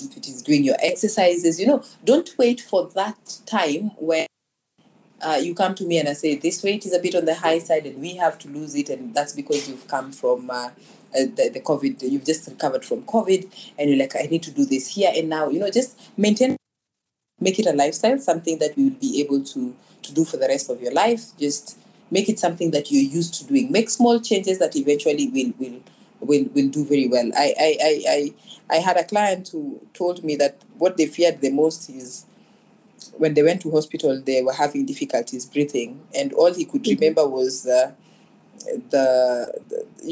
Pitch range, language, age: 145-230 Hz, English, 30-49